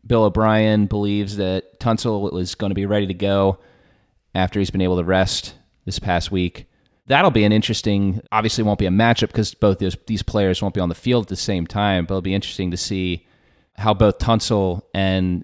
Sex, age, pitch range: male, 30-49, 90-105 Hz